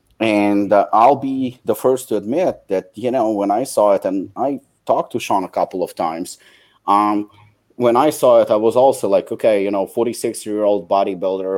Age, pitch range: 30-49, 95-115 Hz